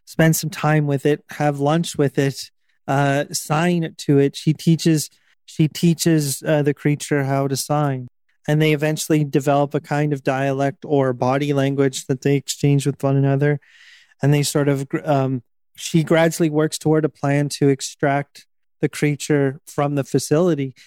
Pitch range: 140-160 Hz